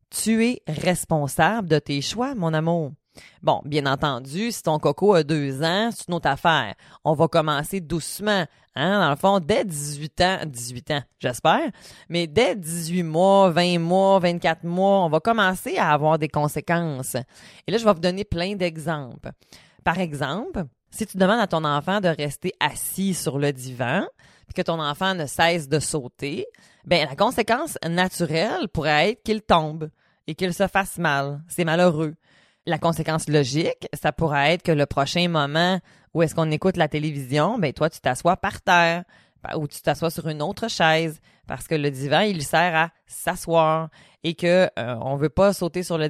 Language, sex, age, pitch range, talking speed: French, female, 30-49, 150-185 Hz, 185 wpm